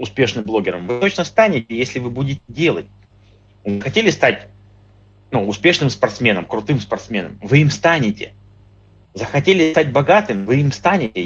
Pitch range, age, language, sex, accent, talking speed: 100-140 Hz, 30-49, Russian, male, native, 135 wpm